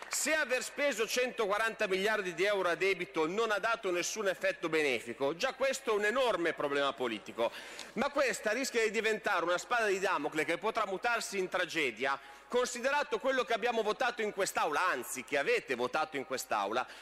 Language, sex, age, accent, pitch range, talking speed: Italian, male, 40-59, native, 180-225 Hz, 175 wpm